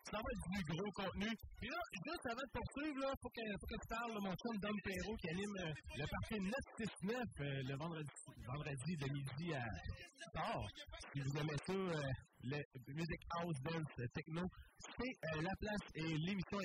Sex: male